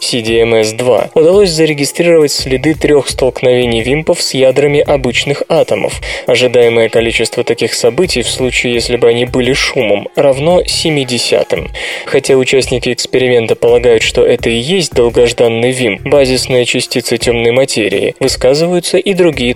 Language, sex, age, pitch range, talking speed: Russian, male, 20-39, 120-195 Hz, 125 wpm